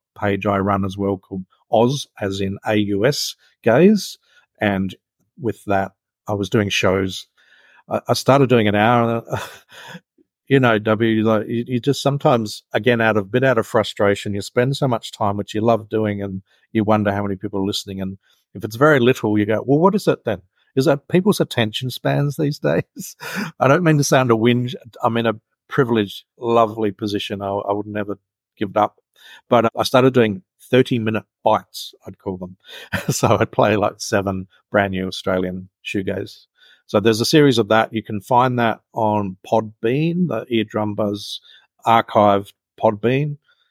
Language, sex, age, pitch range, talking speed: English, male, 50-69, 100-120 Hz, 175 wpm